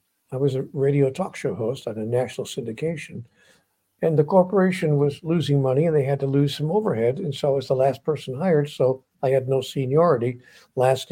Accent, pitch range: American, 130-160 Hz